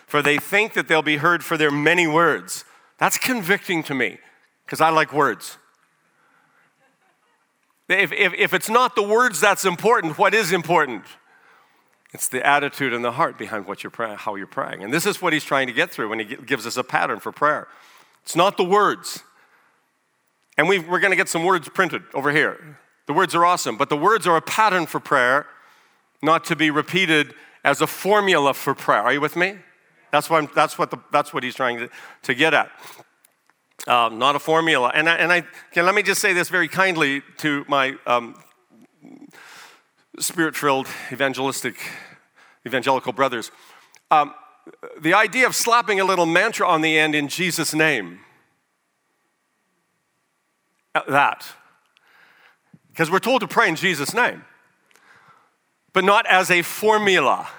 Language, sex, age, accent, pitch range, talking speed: English, male, 50-69, American, 145-190 Hz, 170 wpm